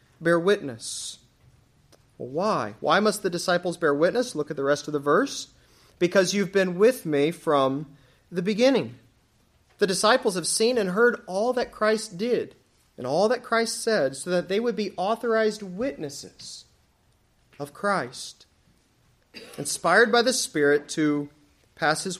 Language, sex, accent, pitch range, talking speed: English, male, American, 145-210 Hz, 150 wpm